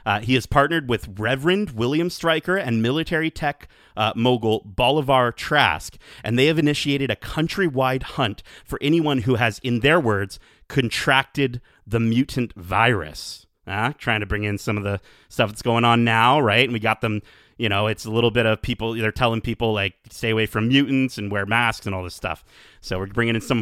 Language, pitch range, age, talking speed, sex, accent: English, 110-140 Hz, 30-49, 200 wpm, male, American